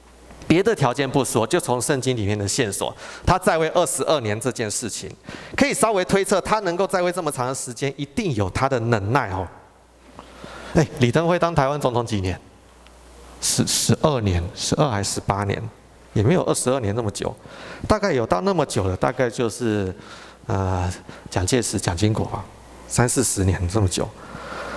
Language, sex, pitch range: Chinese, male, 100-160 Hz